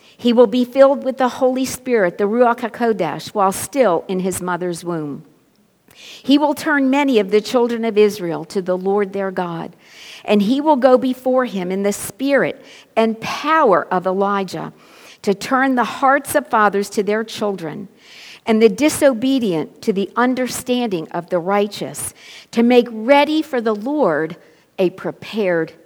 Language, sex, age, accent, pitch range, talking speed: English, female, 50-69, American, 190-255 Hz, 160 wpm